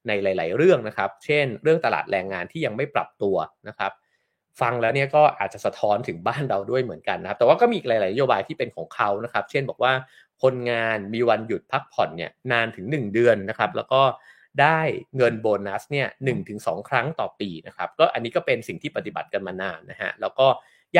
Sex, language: male, English